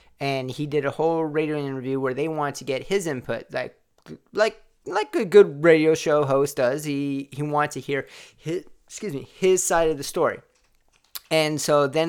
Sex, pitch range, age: male, 135-160 Hz, 30-49